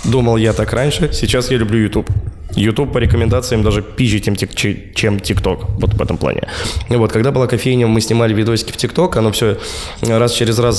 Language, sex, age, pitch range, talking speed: Russian, male, 20-39, 100-120 Hz, 190 wpm